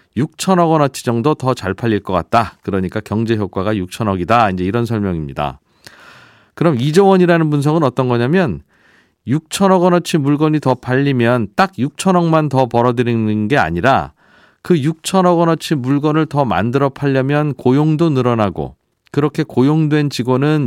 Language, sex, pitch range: Korean, male, 115-155 Hz